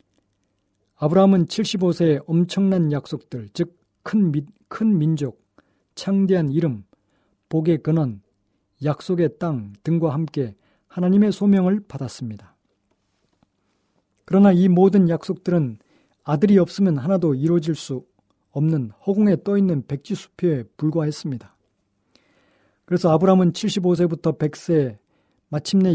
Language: Korean